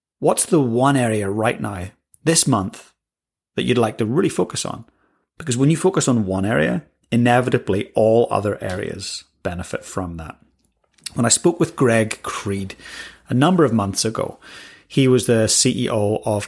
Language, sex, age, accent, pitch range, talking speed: English, male, 30-49, British, 105-130 Hz, 165 wpm